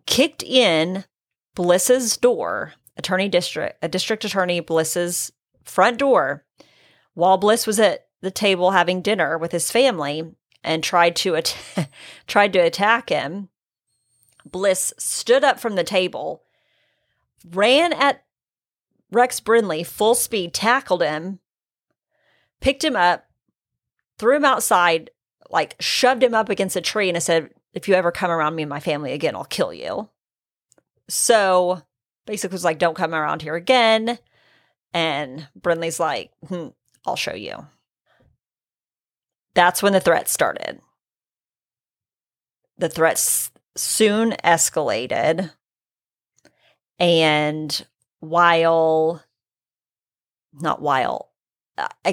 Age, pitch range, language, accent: 30-49, 160-215 Hz, English, American